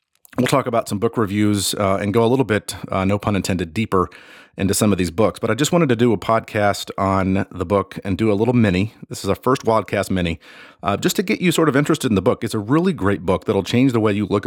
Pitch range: 95-115 Hz